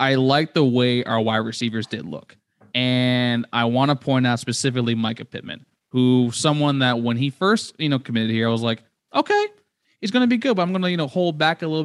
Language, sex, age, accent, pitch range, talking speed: English, male, 20-39, American, 115-135 Hz, 240 wpm